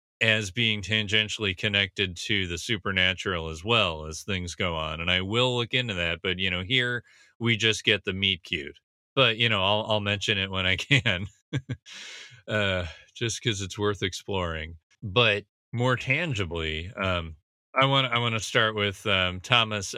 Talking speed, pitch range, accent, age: 175 wpm, 95-115 Hz, American, 30-49